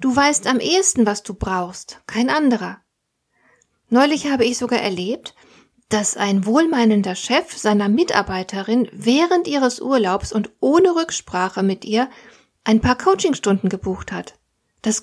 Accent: German